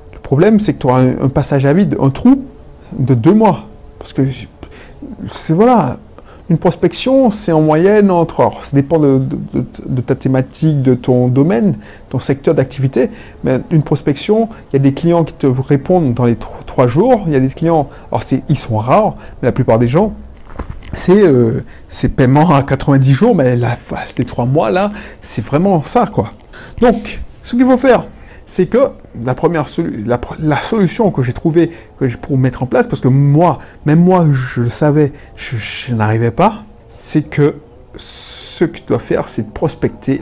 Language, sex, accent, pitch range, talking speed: French, male, French, 125-175 Hz, 190 wpm